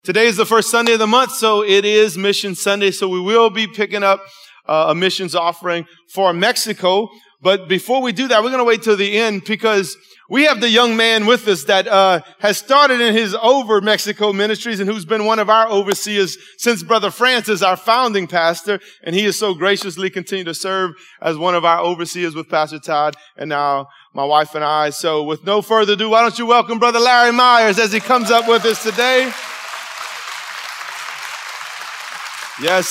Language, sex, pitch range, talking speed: English, male, 170-225 Hz, 200 wpm